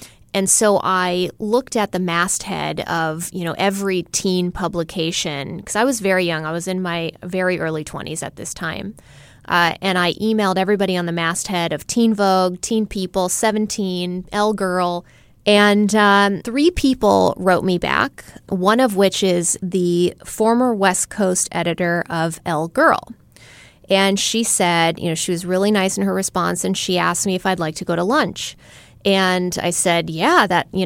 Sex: female